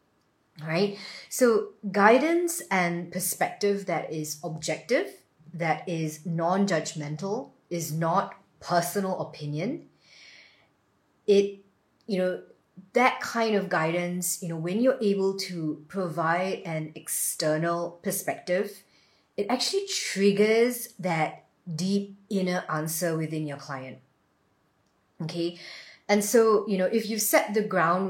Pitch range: 155-195 Hz